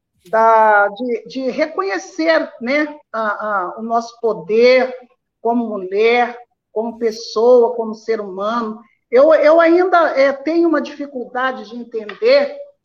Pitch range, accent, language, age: 230-285 Hz, Brazilian, Portuguese, 50-69